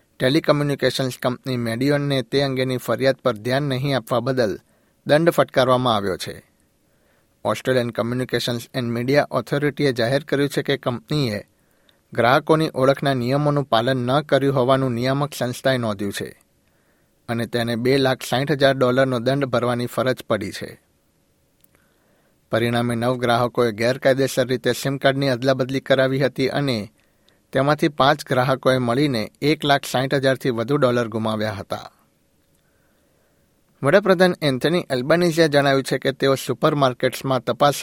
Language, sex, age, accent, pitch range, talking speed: Gujarati, male, 60-79, native, 125-145 Hz, 110 wpm